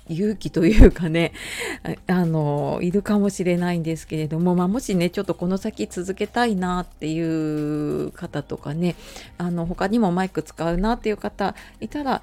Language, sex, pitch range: Japanese, female, 160-225 Hz